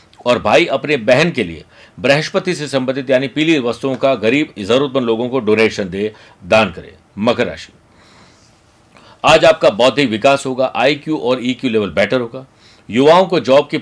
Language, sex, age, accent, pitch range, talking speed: Hindi, male, 60-79, native, 115-150 Hz, 155 wpm